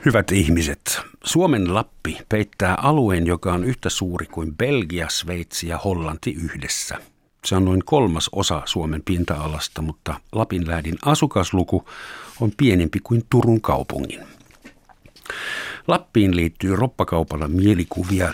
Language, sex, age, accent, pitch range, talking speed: Finnish, male, 60-79, native, 85-115 Hz, 115 wpm